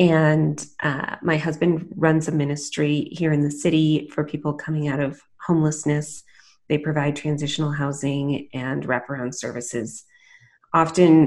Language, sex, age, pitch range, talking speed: English, female, 30-49, 140-165 Hz, 135 wpm